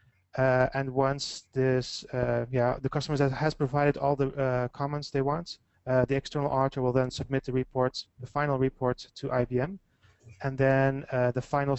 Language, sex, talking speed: English, male, 180 wpm